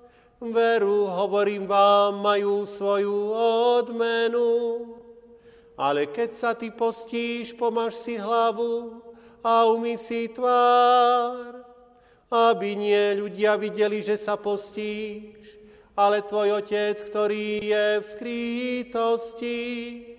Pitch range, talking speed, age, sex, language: 210-235 Hz, 95 wpm, 40-59, male, Slovak